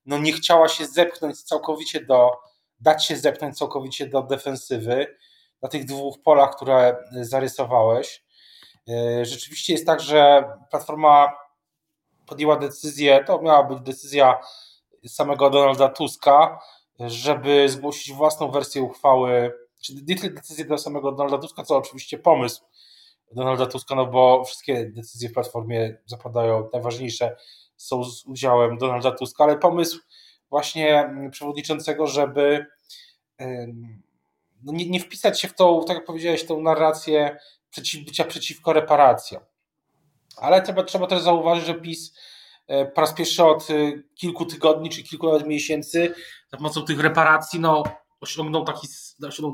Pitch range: 135-155 Hz